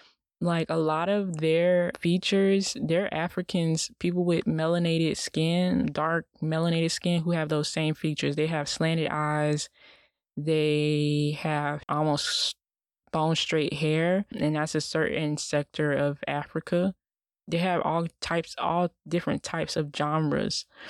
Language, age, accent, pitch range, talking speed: English, 20-39, American, 155-175 Hz, 130 wpm